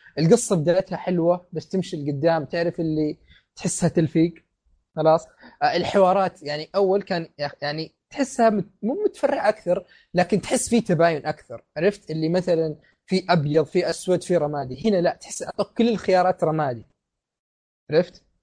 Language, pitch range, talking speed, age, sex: Arabic, 160-200 Hz, 135 wpm, 20-39, male